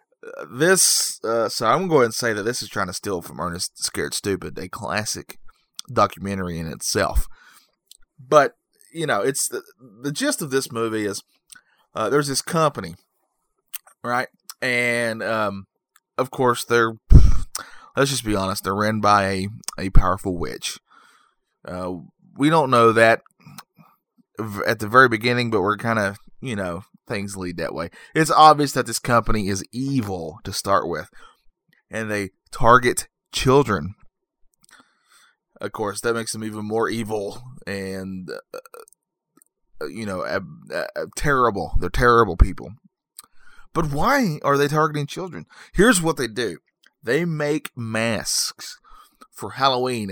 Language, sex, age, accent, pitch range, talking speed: English, male, 20-39, American, 100-135 Hz, 140 wpm